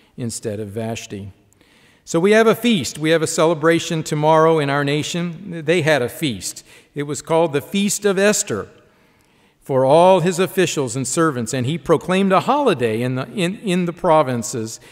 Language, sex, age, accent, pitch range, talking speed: English, male, 50-69, American, 130-160 Hz, 175 wpm